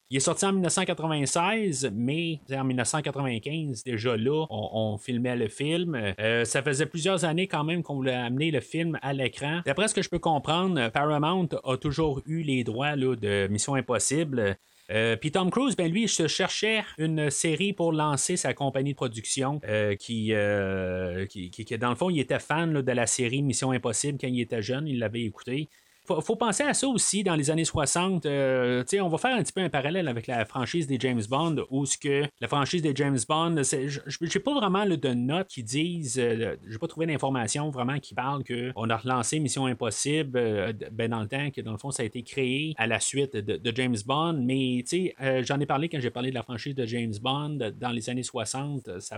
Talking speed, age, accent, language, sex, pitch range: 220 wpm, 30-49, Canadian, French, male, 115-150 Hz